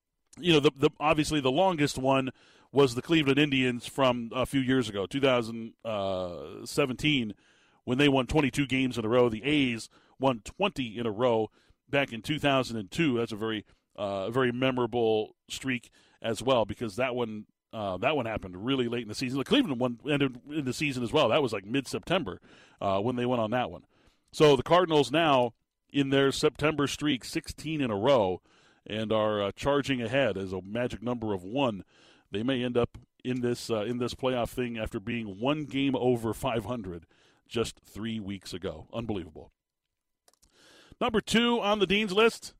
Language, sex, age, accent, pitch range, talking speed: English, male, 40-59, American, 120-155 Hz, 190 wpm